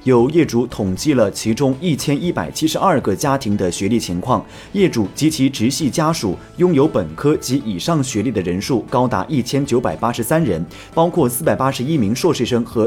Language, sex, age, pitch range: Chinese, male, 30-49, 110-150 Hz